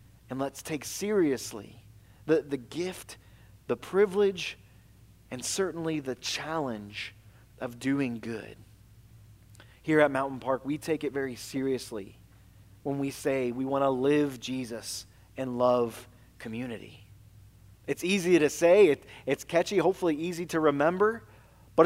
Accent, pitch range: American, 110-145 Hz